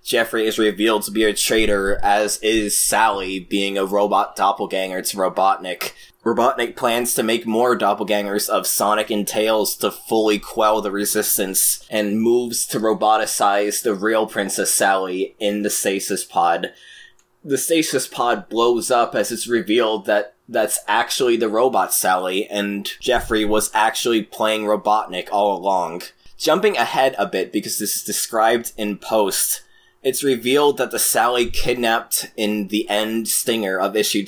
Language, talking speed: English, 150 wpm